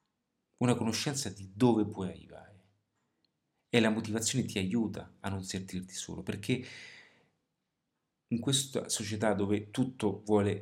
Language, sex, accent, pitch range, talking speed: Italian, male, native, 100-120 Hz, 125 wpm